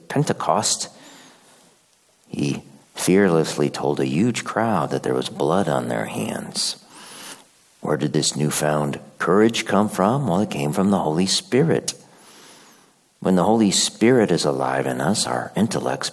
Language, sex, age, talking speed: English, male, 50-69, 140 wpm